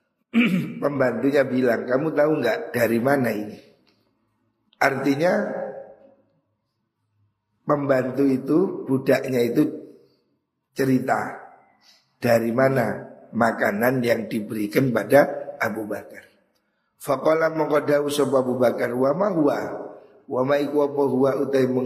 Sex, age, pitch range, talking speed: male, 50-69, 125-160 Hz, 60 wpm